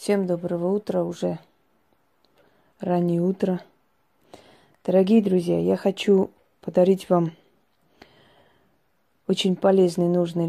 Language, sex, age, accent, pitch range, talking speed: Russian, female, 20-39, native, 165-195 Hz, 85 wpm